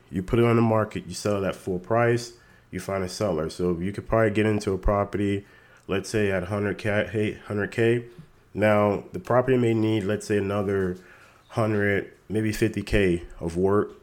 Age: 30-49